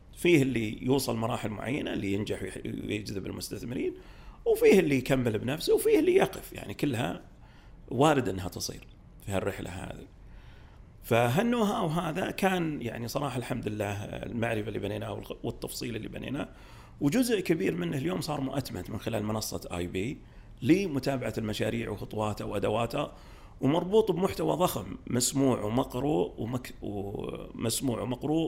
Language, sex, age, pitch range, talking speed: Arabic, male, 40-59, 100-140 Hz, 120 wpm